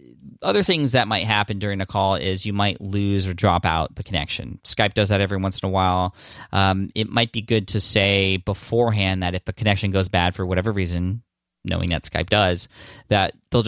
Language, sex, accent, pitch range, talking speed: English, male, American, 90-110 Hz, 210 wpm